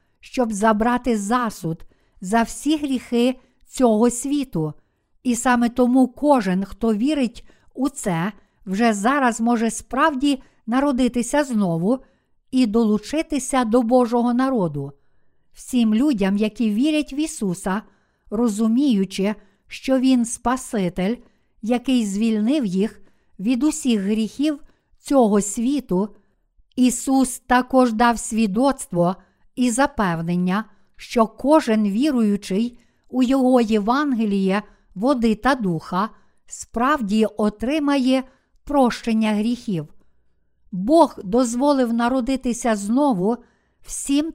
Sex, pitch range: female, 210-260 Hz